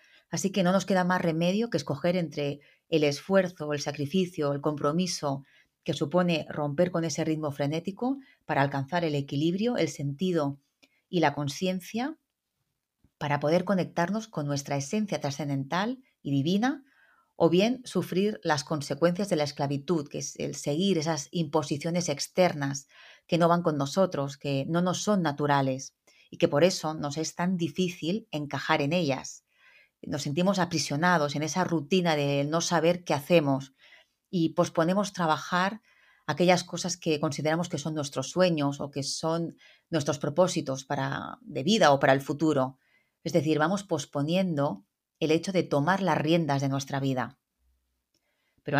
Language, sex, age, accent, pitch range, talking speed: Spanish, female, 30-49, Spanish, 145-180 Hz, 150 wpm